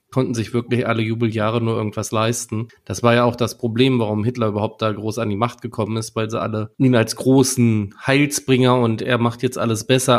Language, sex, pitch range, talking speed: German, male, 115-130 Hz, 220 wpm